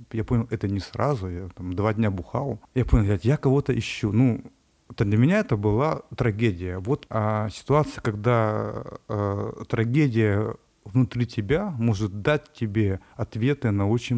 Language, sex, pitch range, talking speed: Russian, male, 105-130 Hz, 150 wpm